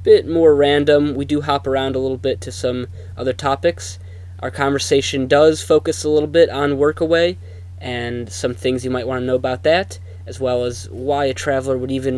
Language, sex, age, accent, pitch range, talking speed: English, male, 20-39, American, 90-135 Hz, 200 wpm